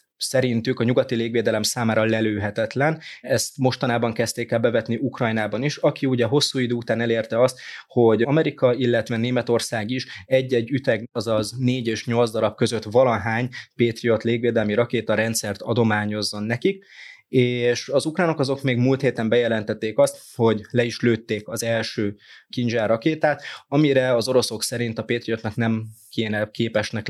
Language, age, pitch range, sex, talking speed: Hungarian, 20-39, 115-125 Hz, male, 145 wpm